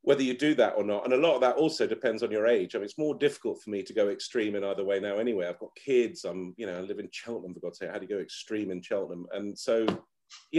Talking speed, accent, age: 305 wpm, British, 40-59